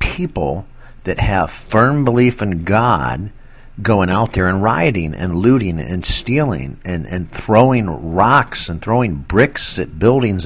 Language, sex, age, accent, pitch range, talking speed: English, male, 50-69, American, 90-120 Hz, 145 wpm